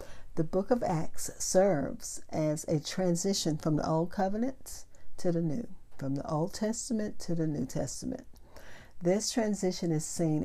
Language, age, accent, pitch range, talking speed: English, 60-79, American, 145-180 Hz, 155 wpm